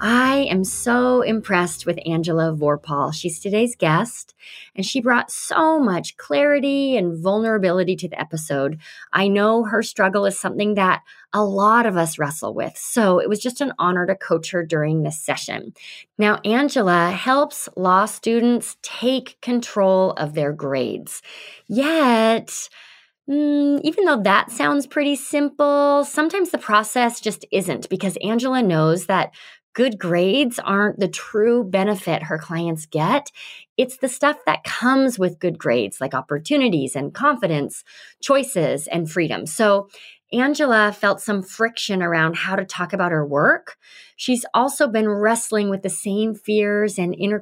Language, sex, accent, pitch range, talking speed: English, female, American, 180-245 Hz, 150 wpm